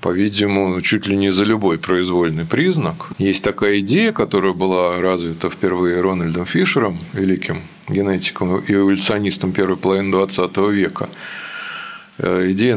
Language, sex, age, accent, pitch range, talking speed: Russian, male, 20-39, native, 95-110 Hz, 120 wpm